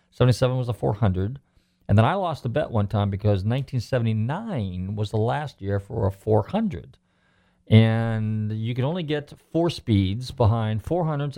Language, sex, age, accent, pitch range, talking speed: English, male, 40-59, American, 100-130 Hz, 160 wpm